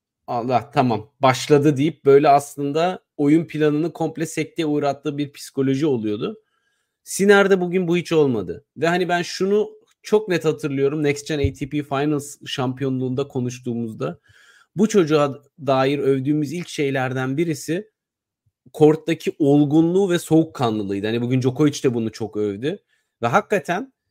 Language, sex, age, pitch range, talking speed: Turkish, male, 40-59, 130-165 Hz, 130 wpm